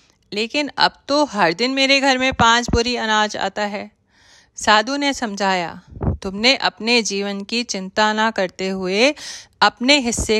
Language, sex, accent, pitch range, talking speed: Hindi, female, native, 205-265 Hz, 150 wpm